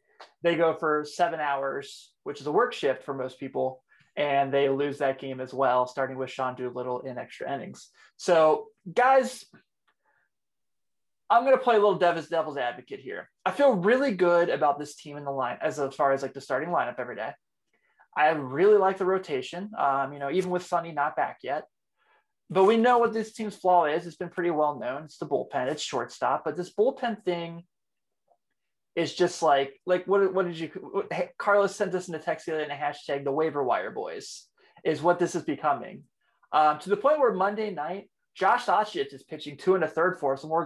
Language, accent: English, American